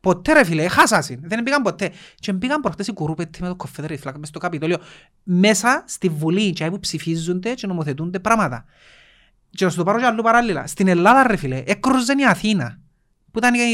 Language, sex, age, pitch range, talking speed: Greek, male, 30-49, 160-235 Hz, 155 wpm